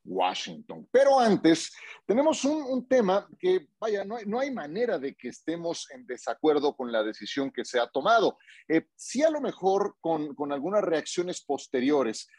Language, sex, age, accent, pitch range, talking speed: Spanish, male, 40-59, Mexican, 130-185 Hz, 170 wpm